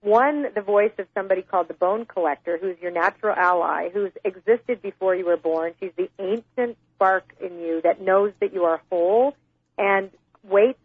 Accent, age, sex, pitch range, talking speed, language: American, 40-59, female, 180-220 Hz, 185 wpm, English